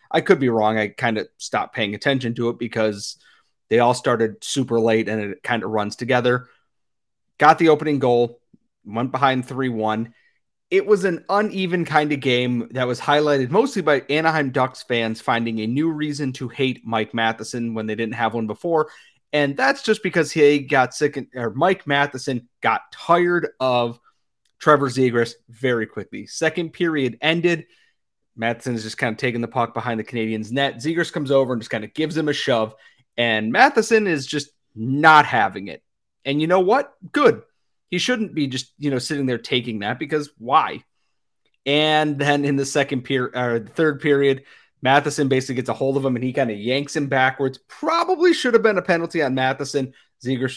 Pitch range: 120-155 Hz